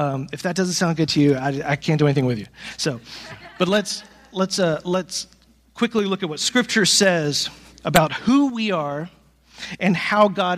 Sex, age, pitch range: male, 40-59, 175-215 Hz